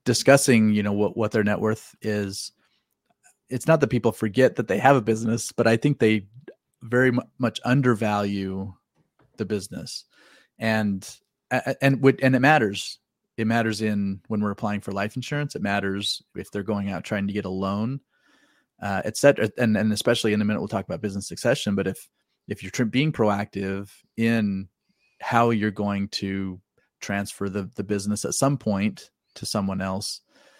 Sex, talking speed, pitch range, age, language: male, 175 wpm, 100-120 Hz, 30-49, English